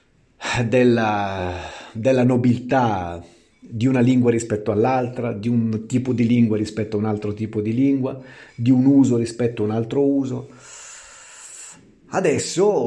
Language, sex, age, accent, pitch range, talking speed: Italian, male, 40-59, native, 110-145 Hz, 135 wpm